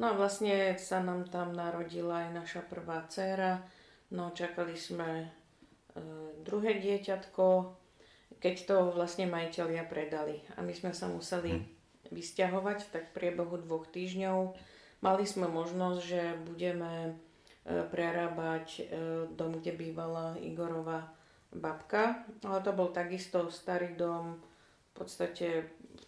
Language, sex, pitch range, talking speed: Slovak, female, 165-185 Hz, 120 wpm